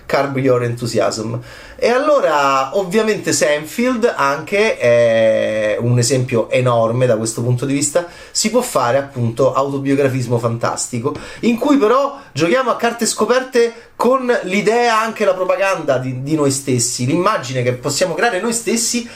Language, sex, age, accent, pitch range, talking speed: Italian, male, 30-49, native, 130-200 Hz, 140 wpm